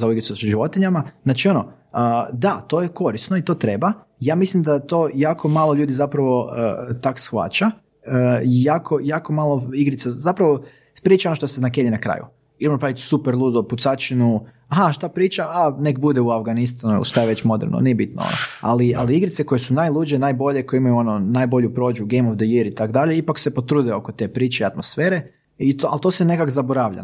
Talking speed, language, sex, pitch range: 200 wpm, Croatian, male, 120-150 Hz